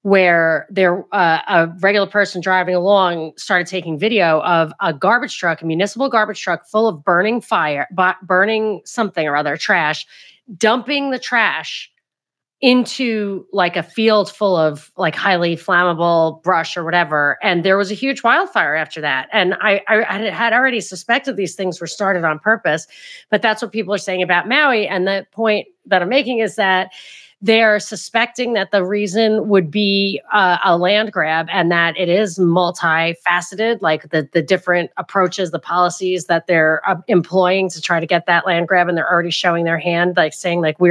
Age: 30-49